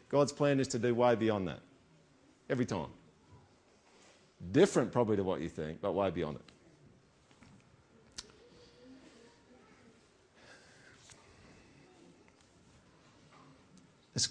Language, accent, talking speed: English, Australian, 90 wpm